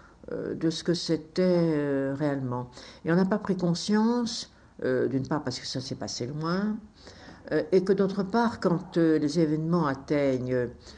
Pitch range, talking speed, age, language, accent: 125-165 Hz, 170 wpm, 60-79, French, French